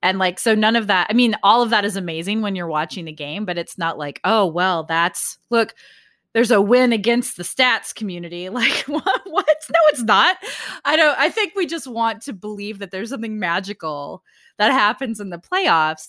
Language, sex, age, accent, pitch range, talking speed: English, female, 20-39, American, 180-250 Hz, 215 wpm